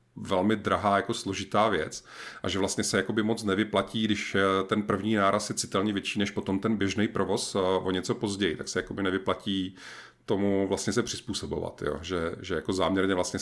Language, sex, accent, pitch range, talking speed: Czech, male, native, 95-105 Hz, 180 wpm